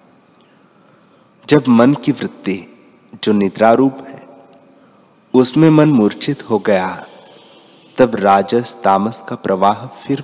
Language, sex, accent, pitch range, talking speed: Hindi, male, native, 100-135 Hz, 105 wpm